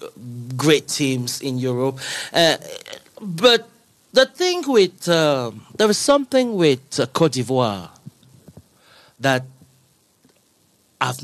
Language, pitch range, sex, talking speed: English, 125-160 Hz, male, 100 wpm